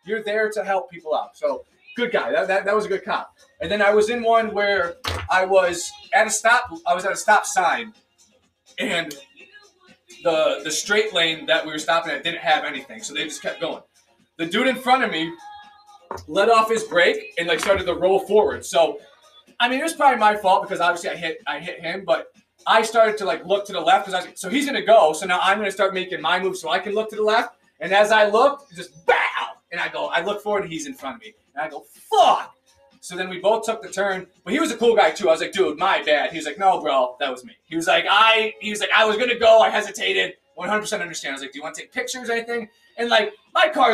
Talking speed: 265 wpm